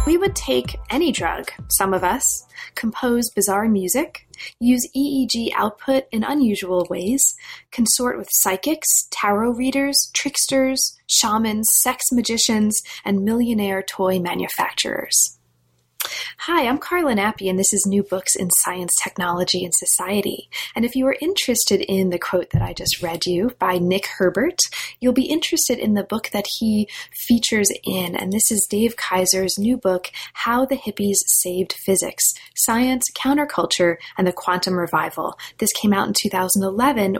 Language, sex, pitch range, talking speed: English, female, 185-240 Hz, 150 wpm